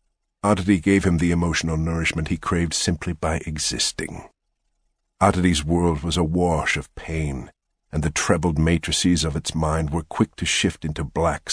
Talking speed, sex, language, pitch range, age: 160 wpm, male, English, 75-95 Hz, 50-69